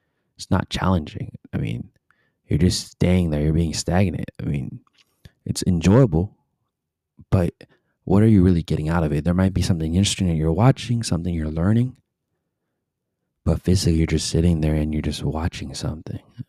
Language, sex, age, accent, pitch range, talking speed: English, male, 30-49, American, 80-100 Hz, 170 wpm